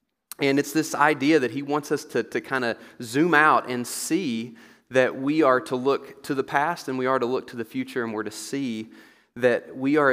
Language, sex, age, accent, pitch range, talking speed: English, male, 30-49, American, 115-140 Hz, 230 wpm